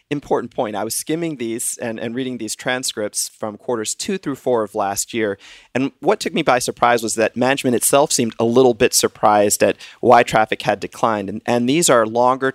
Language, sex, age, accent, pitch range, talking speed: English, male, 30-49, American, 110-130 Hz, 210 wpm